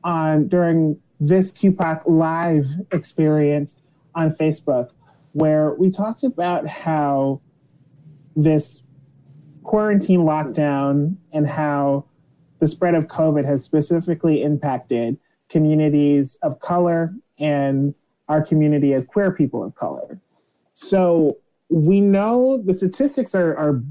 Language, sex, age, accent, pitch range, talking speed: English, male, 30-49, American, 145-175 Hz, 110 wpm